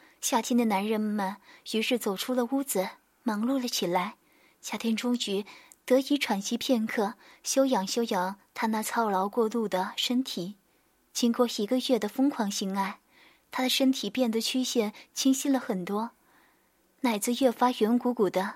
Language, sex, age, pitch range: Chinese, female, 20-39, 210-255 Hz